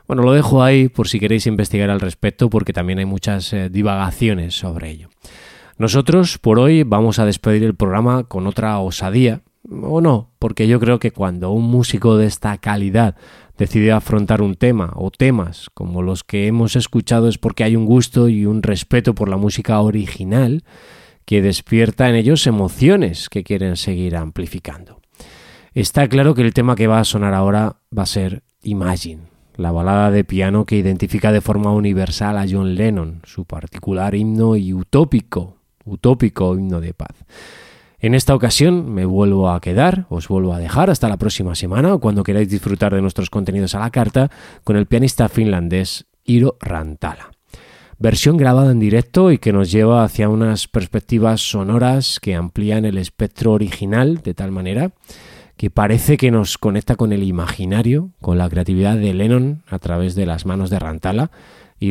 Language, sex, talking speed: Spanish, male, 175 wpm